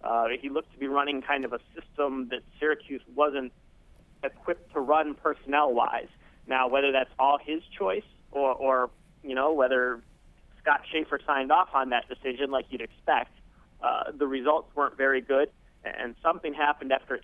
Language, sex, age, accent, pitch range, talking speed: English, male, 30-49, American, 125-145 Hz, 165 wpm